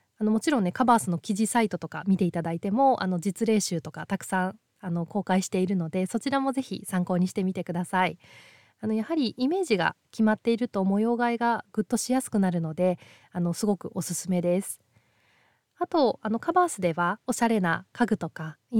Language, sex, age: Japanese, female, 20-39